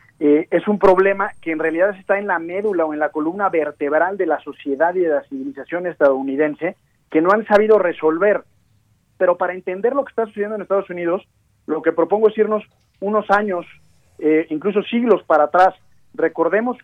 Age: 40-59